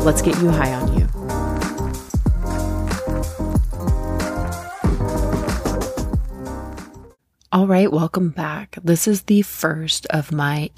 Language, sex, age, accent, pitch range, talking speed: English, female, 30-49, American, 135-175 Hz, 90 wpm